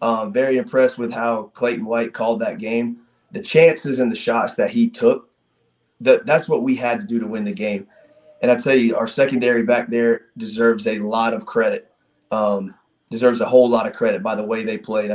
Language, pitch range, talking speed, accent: English, 115-185 Hz, 210 wpm, American